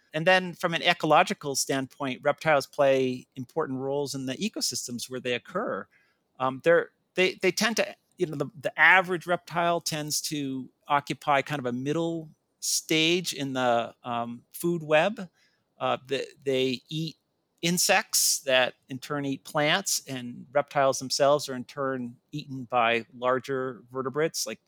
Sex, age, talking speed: male, 50-69, 135 wpm